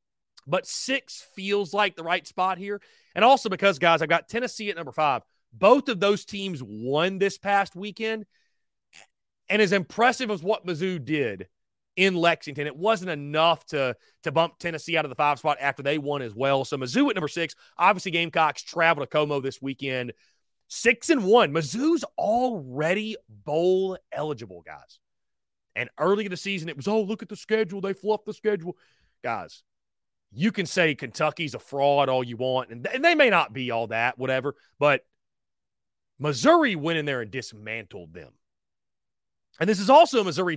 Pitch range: 140-200 Hz